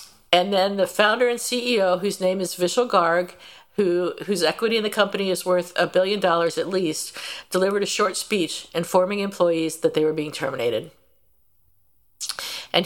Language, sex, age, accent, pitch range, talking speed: English, female, 50-69, American, 170-215 Hz, 170 wpm